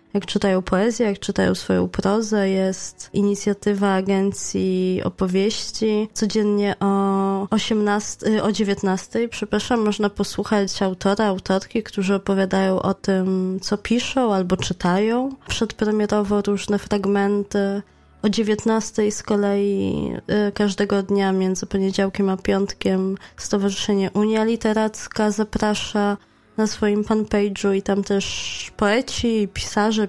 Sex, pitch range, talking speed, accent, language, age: female, 195-215 Hz, 105 wpm, native, Polish, 20-39